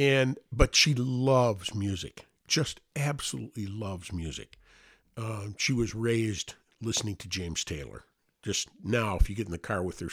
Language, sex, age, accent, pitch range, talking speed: English, male, 50-69, American, 105-125 Hz, 160 wpm